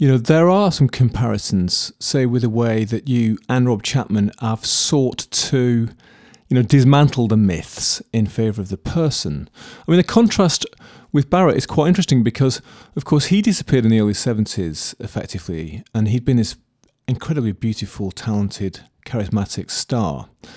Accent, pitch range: British, 105-145 Hz